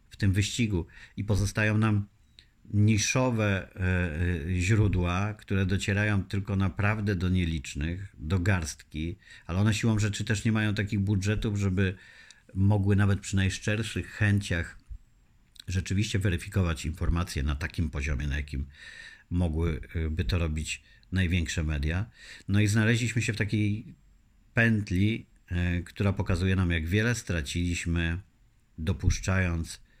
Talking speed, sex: 115 wpm, male